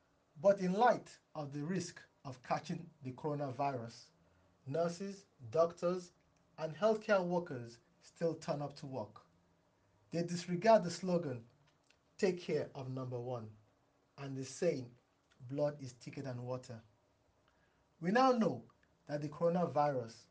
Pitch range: 125-170 Hz